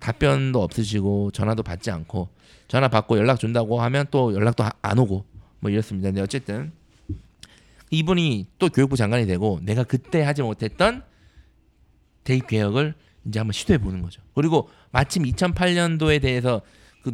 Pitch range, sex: 105-160 Hz, male